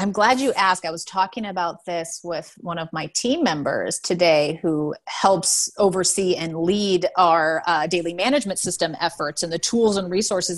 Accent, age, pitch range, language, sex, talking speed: American, 30-49, 175-225 Hz, English, female, 180 wpm